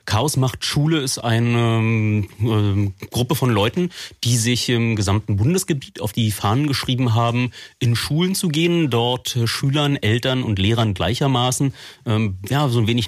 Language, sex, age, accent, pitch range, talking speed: German, male, 30-49, German, 100-120 Hz, 150 wpm